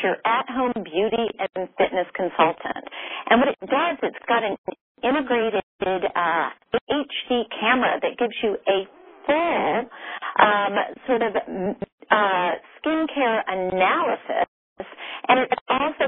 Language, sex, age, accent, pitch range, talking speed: English, female, 40-59, American, 185-250 Hz, 120 wpm